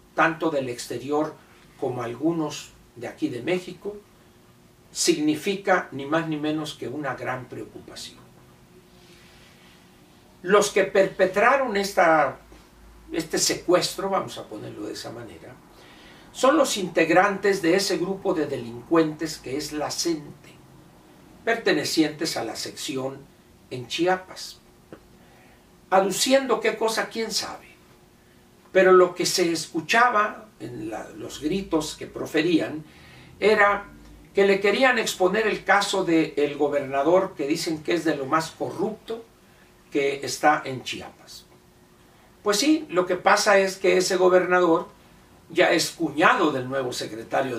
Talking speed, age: 125 wpm, 60-79